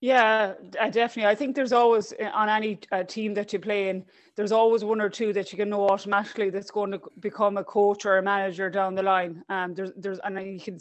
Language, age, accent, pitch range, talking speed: English, 20-39, Irish, 195-215 Hz, 235 wpm